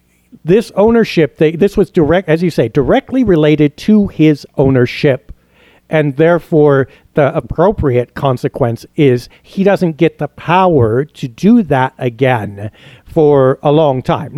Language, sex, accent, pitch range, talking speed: English, male, American, 135-175 Hz, 135 wpm